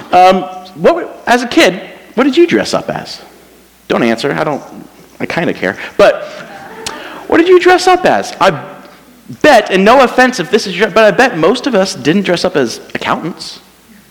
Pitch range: 160-220 Hz